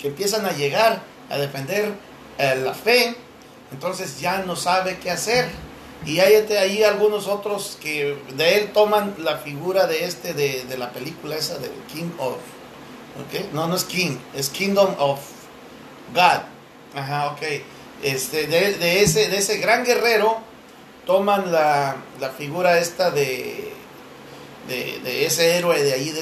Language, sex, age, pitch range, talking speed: English, male, 40-59, 155-215 Hz, 155 wpm